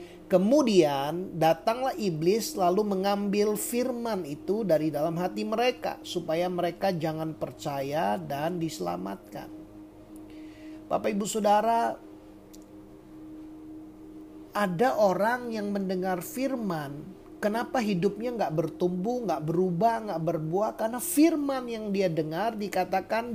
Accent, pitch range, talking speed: native, 175-255 Hz, 100 wpm